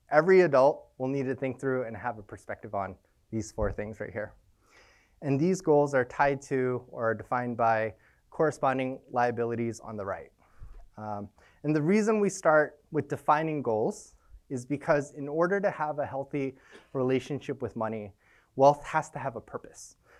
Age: 20-39